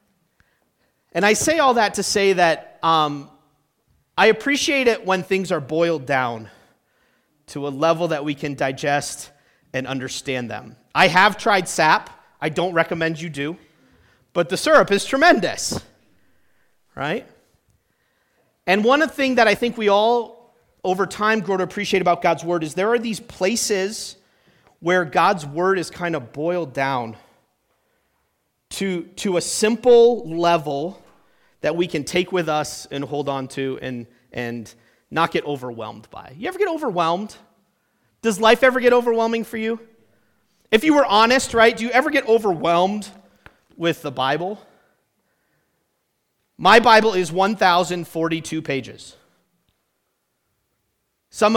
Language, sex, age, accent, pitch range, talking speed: English, male, 40-59, American, 145-215 Hz, 145 wpm